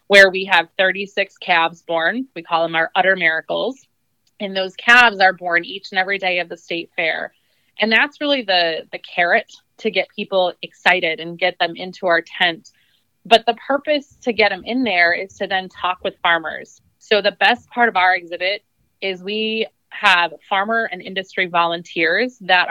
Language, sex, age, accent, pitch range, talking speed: English, female, 20-39, American, 170-200 Hz, 185 wpm